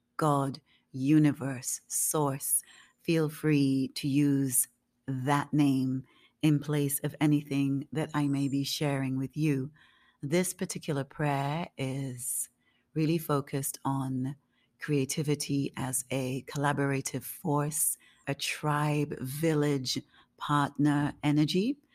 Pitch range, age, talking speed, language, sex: 135-155 Hz, 40-59, 100 wpm, English, female